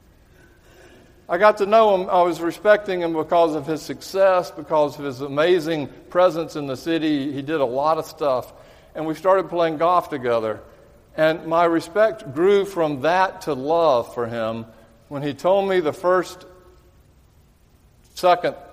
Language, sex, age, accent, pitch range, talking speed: English, male, 50-69, American, 125-170 Hz, 160 wpm